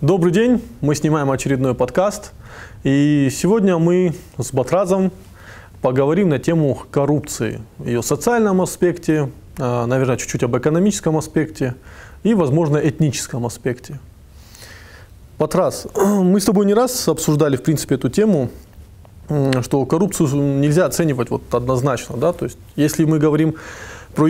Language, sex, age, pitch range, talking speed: Russian, male, 20-39, 125-165 Hz, 120 wpm